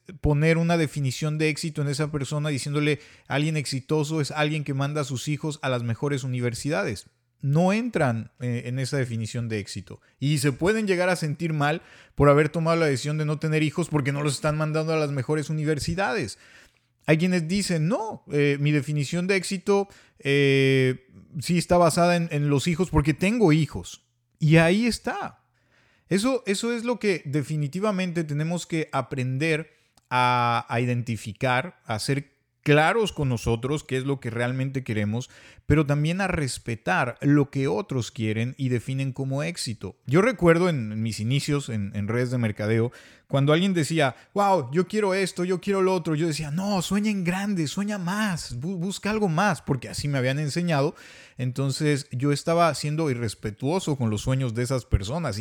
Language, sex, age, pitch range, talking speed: Spanish, male, 30-49, 130-170 Hz, 170 wpm